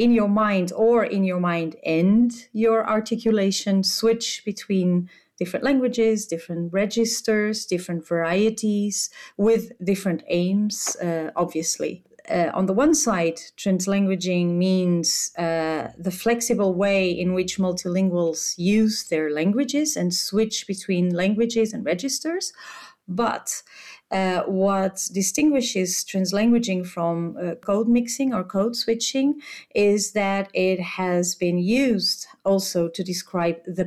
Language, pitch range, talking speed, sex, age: English, 175-220 Hz, 120 wpm, female, 40-59